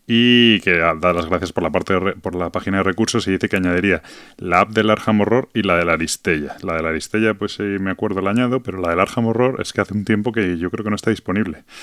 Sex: male